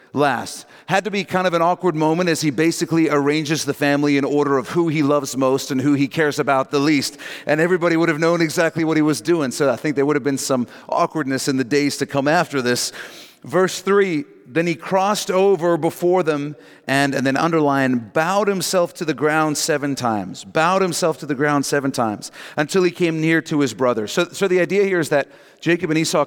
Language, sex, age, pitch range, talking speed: English, male, 40-59, 135-165 Hz, 225 wpm